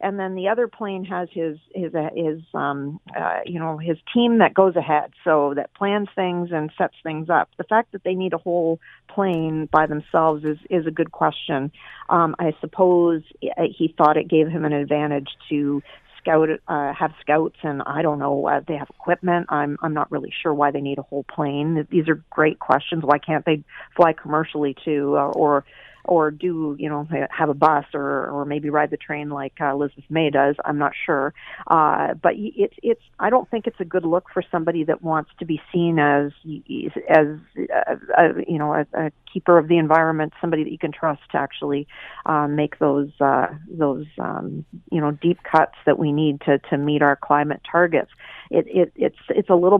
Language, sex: English, female